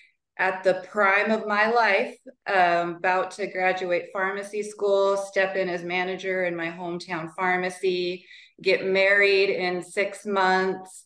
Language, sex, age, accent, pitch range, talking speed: English, female, 20-39, American, 165-195 Hz, 135 wpm